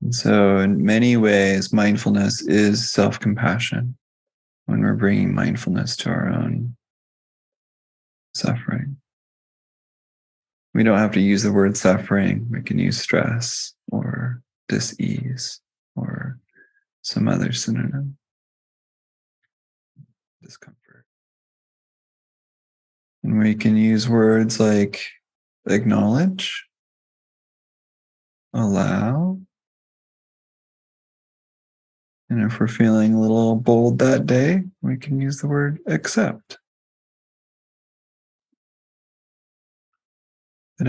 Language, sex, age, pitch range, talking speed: English, male, 20-39, 105-135 Hz, 85 wpm